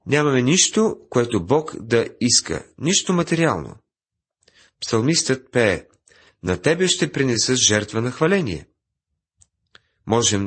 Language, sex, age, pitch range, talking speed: Bulgarian, male, 40-59, 95-135 Hz, 105 wpm